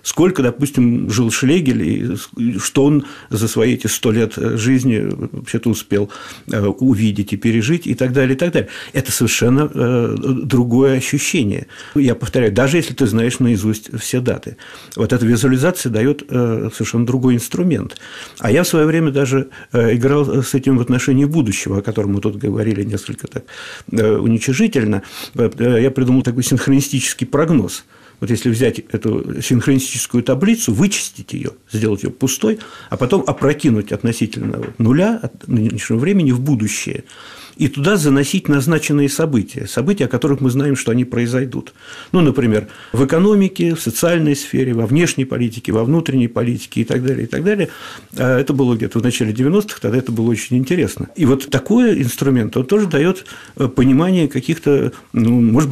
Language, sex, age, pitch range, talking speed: Russian, male, 50-69, 115-140 Hz, 150 wpm